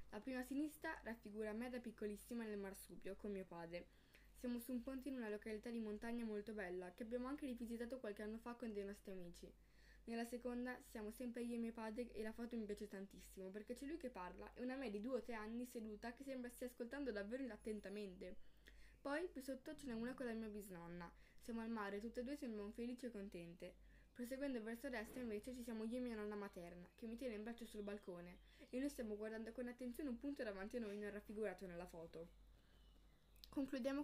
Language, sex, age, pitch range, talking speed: Italian, female, 10-29, 205-245 Hz, 220 wpm